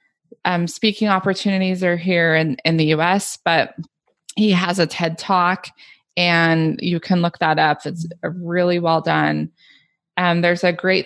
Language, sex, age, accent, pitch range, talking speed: English, female, 20-39, American, 160-185 Hz, 155 wpm